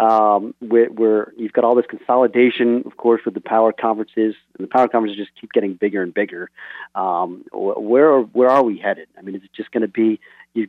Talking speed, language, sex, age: 220 wpm, English, male, 40-59